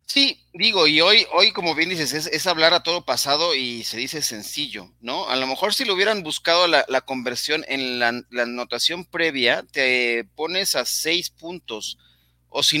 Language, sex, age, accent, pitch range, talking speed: Spanish, male, 40-59, Mexican, 115-160 Hz, 190 wpm